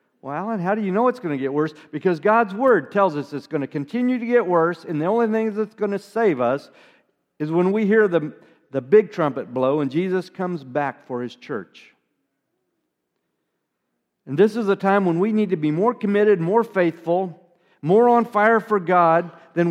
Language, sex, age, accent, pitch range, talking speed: English, male, 50-69, American, 150-210 Hz, 205 wpm